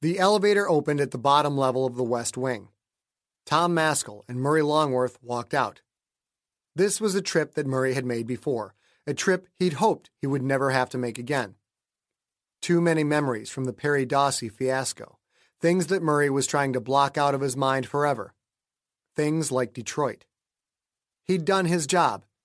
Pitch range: 130-165 Hz